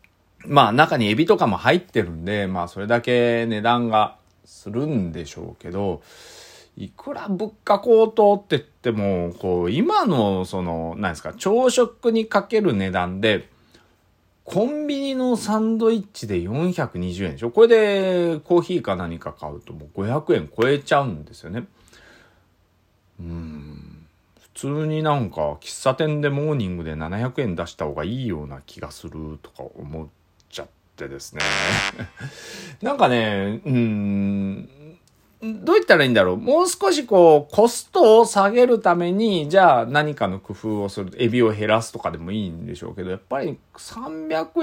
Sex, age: male, 40-59